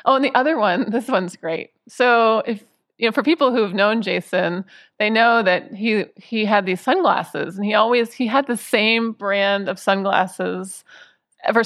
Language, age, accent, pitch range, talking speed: English, 30-49, American, 190-235 Hz, 185 wpm